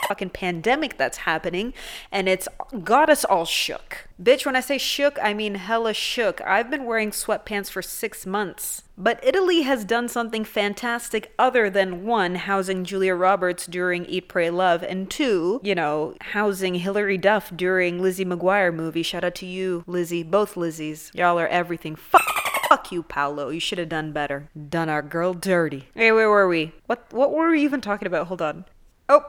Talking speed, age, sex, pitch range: 185 wpm, 30-49, female, 180-235 Hz